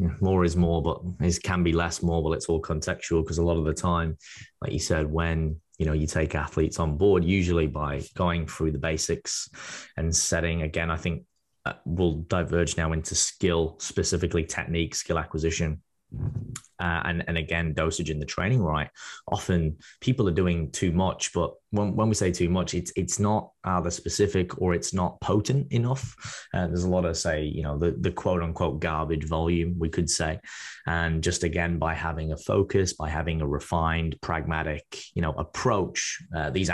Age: 10-29